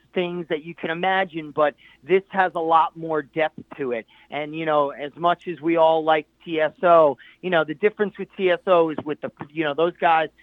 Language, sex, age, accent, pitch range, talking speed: English, male, 40-59, American, 140-165 Hz, 215 wpm